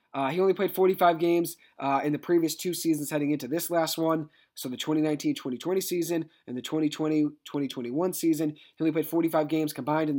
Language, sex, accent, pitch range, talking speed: English, male, American, 145-165 Hz, 190 wpm